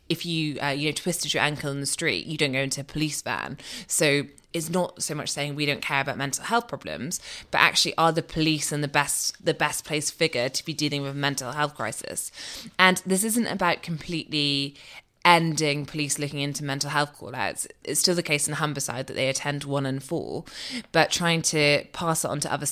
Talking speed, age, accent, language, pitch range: 225 wpm, 20-39, British, English, 140-165 Hz